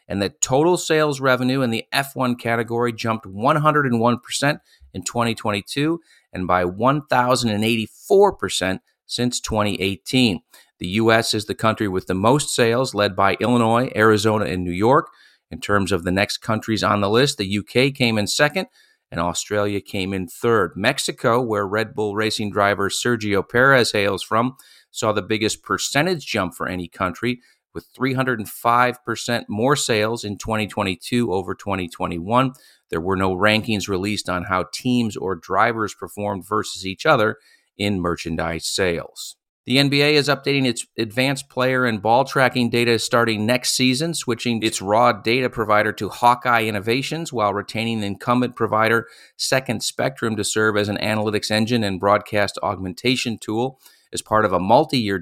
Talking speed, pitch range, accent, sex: 150 wpm, 100-125 Hz, American, male